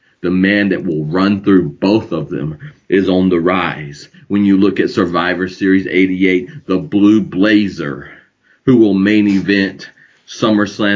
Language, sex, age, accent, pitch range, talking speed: English, male, 40-59, American, 95-105 Hz, 155 wpm